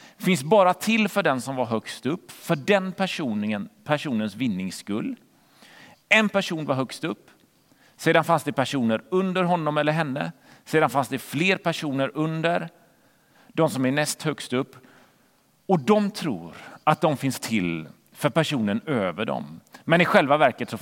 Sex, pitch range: male, 145-215 Hz